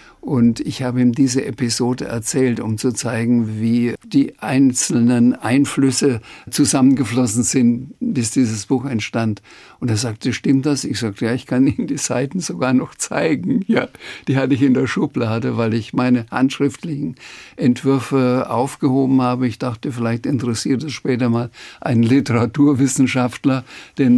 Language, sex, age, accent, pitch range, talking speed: German, male, 60-79, German, 120-140 Hz, 150 wpm